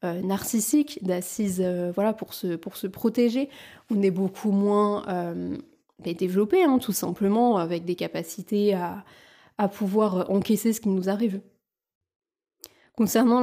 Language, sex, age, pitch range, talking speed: French, female, 20-39, 190-215 Hz, 125 wpm